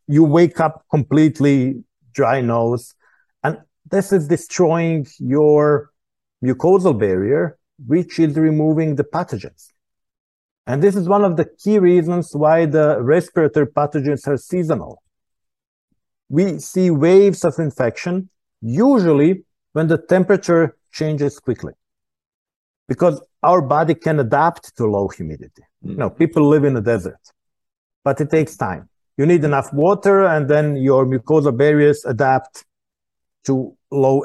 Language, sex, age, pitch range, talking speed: English, male, 50-69, 120-165 Hz, 130 wpm